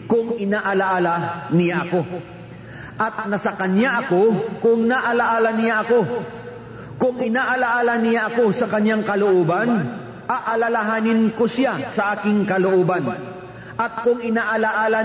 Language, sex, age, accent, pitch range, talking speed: Filipino, male, 40-59, native, 175-225 Hz, 110 wpm